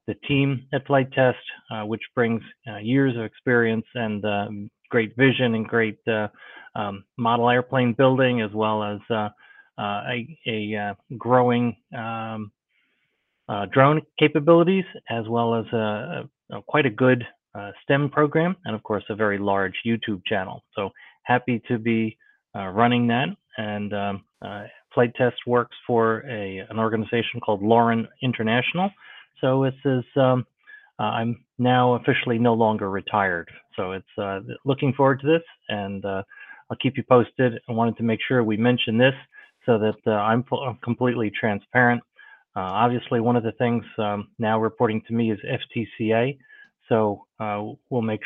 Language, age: English, 30-49